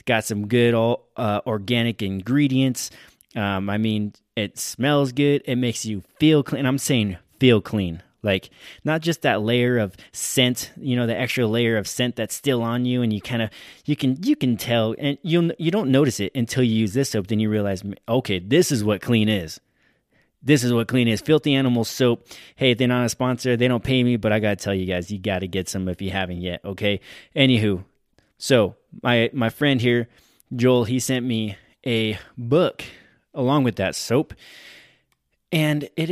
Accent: American